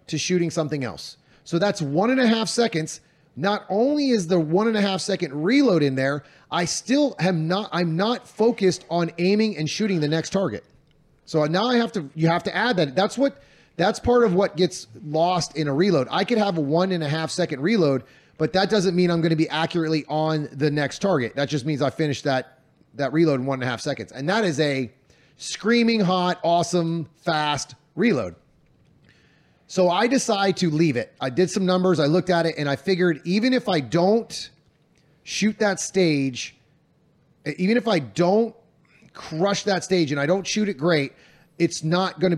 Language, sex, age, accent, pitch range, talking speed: English, male, 30-49, American, 150-195 Hz, 205 wpm